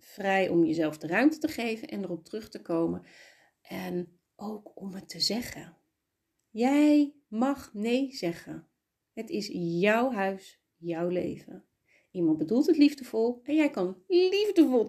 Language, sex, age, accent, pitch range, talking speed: Dutch, female, 30-49, Dutch, 175-265 Hz, 145 wpm